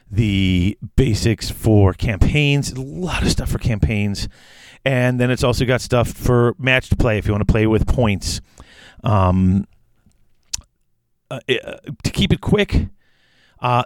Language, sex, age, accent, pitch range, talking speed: English, male, 40-59, American, 100-120 Hz, 145 wpm